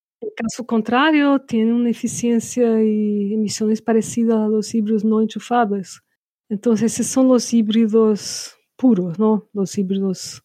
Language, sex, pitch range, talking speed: English, female, 205-240 Hz, 130 wpm